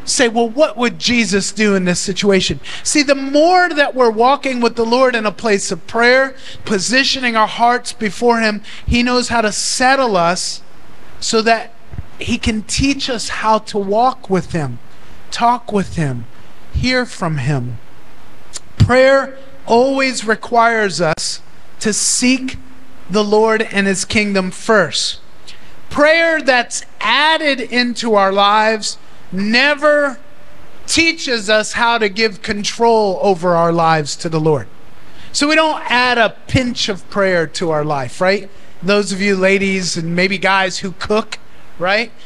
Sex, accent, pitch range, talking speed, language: male, American, 195-245 Hz, 150 wpm, English